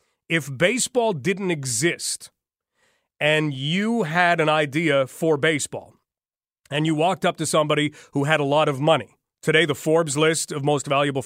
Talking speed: 160 wpm